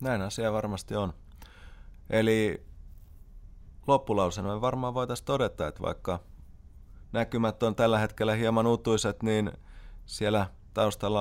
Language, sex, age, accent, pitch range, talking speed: Finnish, male, 30-49, native, 90-110 Hz, 110 wpm